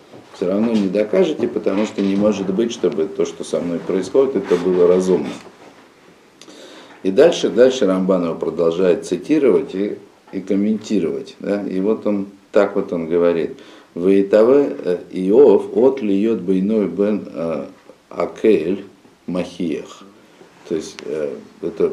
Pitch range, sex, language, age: 90-120 Hz, male, Russian, 50-69